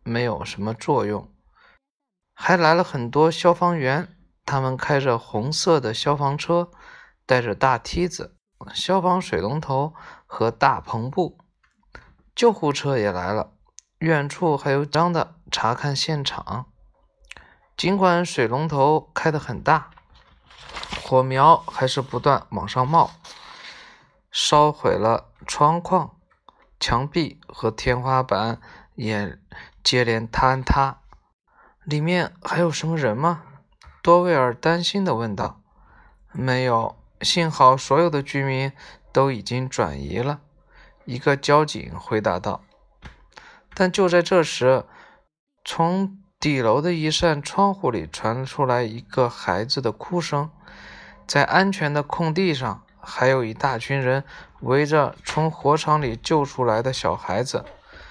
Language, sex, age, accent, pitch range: Chinese, male, 20-39, native, 125-170 Hz